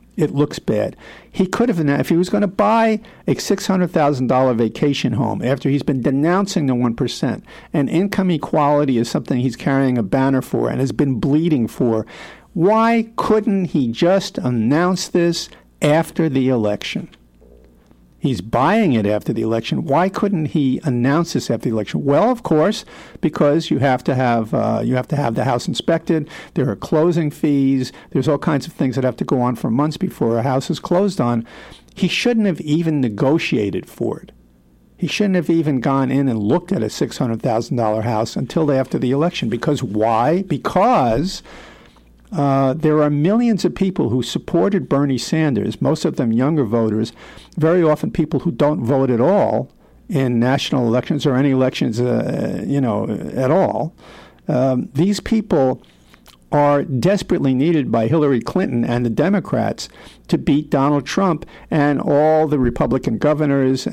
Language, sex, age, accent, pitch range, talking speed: English, male, 50-69, American, 125-165 Hz, 175 wpm